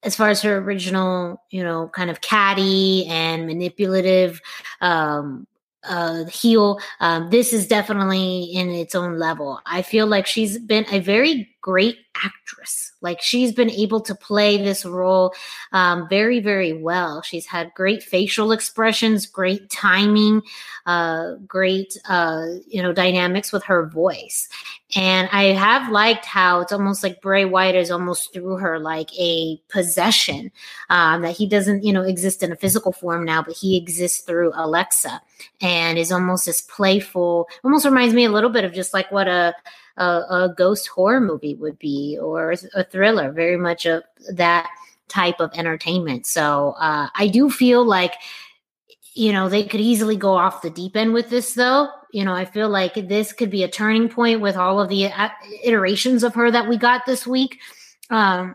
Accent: American